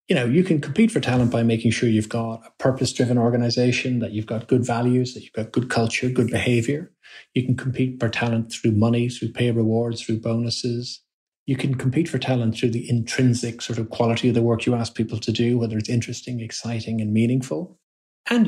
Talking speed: 210 wpm